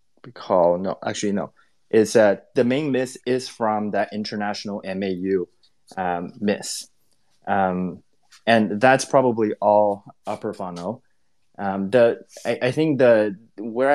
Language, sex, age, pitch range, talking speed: English, male, 20-39, 95-110 Hz, 130 wpm